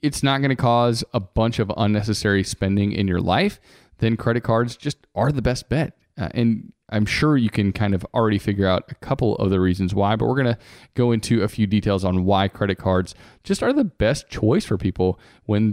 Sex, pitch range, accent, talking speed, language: male, 100-125 Hz, American, 220 wpm, English